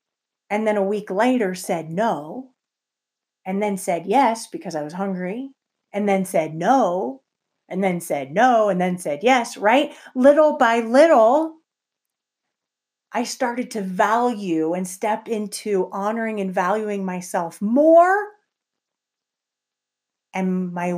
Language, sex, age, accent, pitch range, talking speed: English, female, 30-49, American, 190-270 Hz, 130 wpm